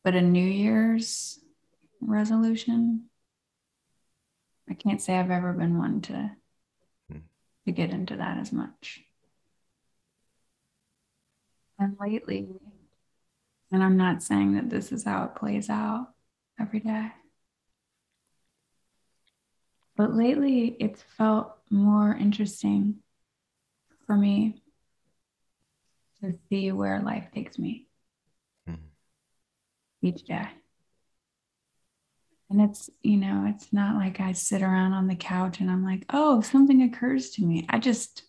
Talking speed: 115 wpm